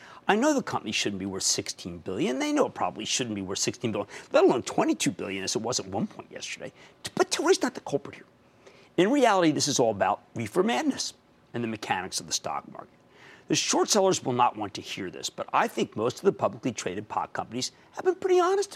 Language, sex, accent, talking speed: English, male, American, 235 wpm